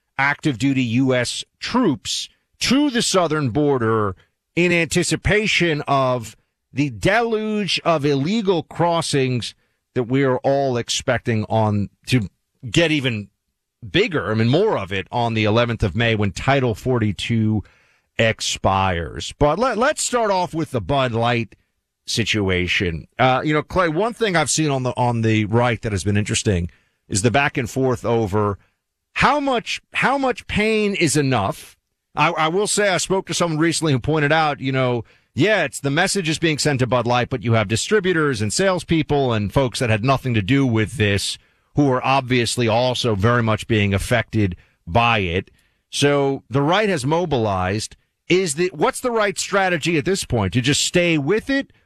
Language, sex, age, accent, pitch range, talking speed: English, male, 40-59, American, 110-160 Hz, 170 wpm